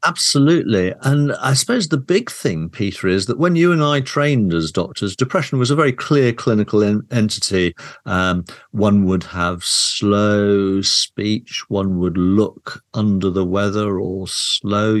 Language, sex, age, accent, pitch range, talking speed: English, male, 50-69, British, 95-135 Hz, 150 wpm